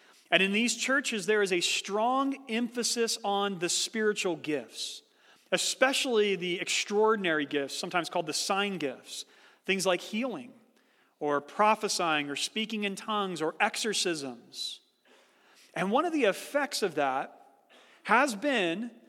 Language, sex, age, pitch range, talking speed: English, male, 40-59, 180-245 Hz, 130 wpm